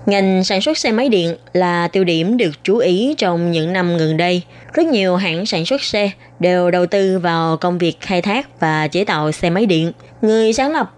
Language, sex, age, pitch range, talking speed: Vietnamese, female, 20-39, 170-220 Hz, 220 wpm